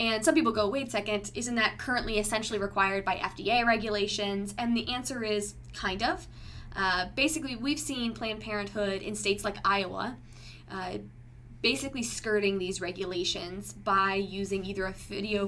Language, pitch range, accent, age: English, 185-215 Hz, American, 10-29